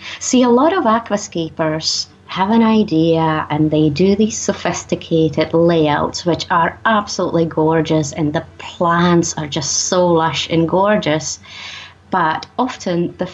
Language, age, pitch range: English, 30-49, 160-190 Hz